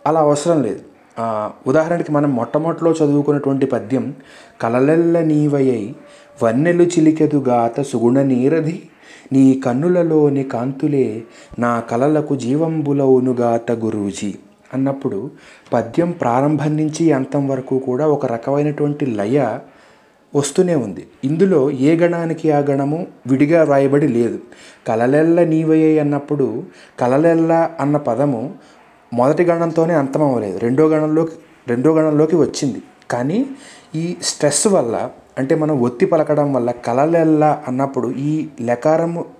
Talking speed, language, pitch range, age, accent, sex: 100 wpm, Telugu, 130-155 Hz, 30-49, native, male